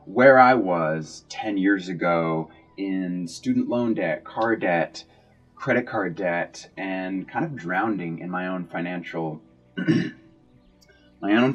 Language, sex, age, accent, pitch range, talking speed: English, male, 20-39, American, 80-95 Hz, 130 wpm